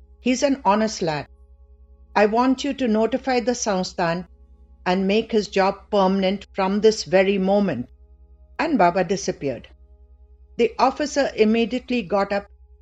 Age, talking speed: 60-79, 130 wpm